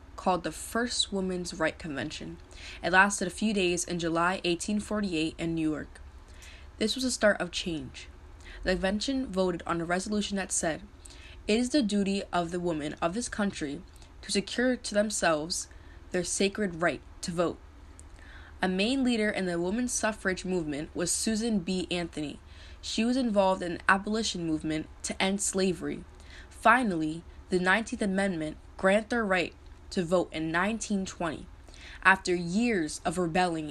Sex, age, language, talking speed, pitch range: female, 20-39, English, 155 wpm, 160-205 Hz